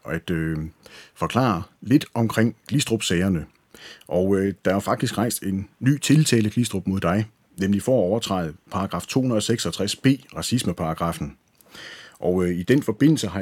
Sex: male